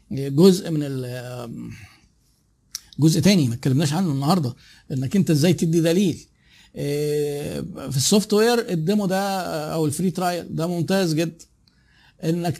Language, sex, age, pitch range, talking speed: Arabic, male, 50-69, 145-185 Hz, 120 wpm